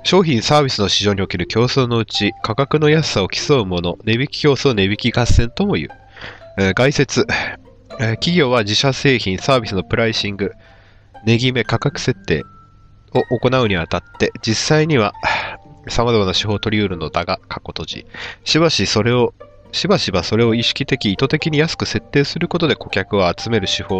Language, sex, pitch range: Japanese, male, 95-120 Hz